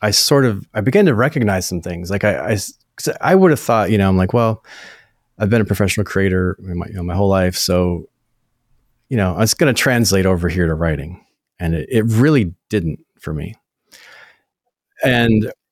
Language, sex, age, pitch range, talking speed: English, male, 30-49, 90-120 Hz, 190 wpm